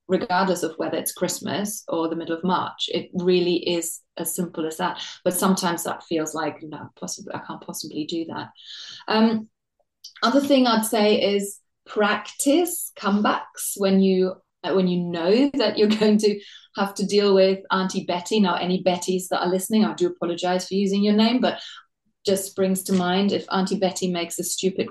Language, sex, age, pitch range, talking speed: English, female, 30-49, 180-220 Hz, 185 wpm